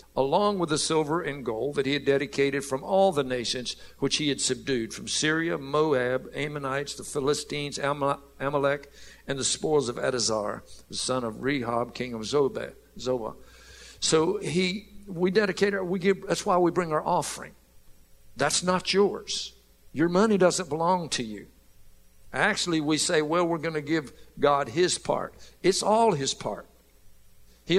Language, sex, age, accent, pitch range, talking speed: English, male, 60-79, American, 135-180 Hz, 160 wpm